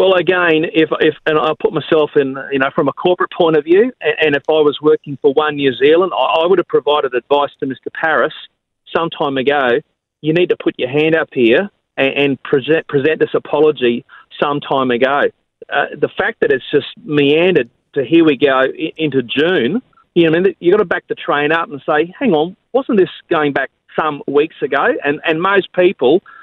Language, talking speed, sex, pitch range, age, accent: English, 220 wpm, male, 145-200 Hz, 40-59, Australian